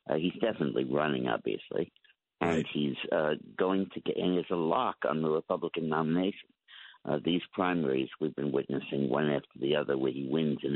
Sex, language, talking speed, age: male, English, 185 wpm, 60-79